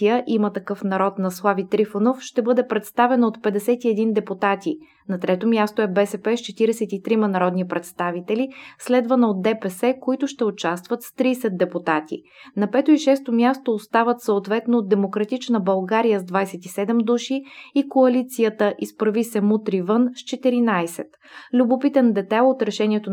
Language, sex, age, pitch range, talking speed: Bulgarian, female, 20-39, 200-240 Hz, 140 wpm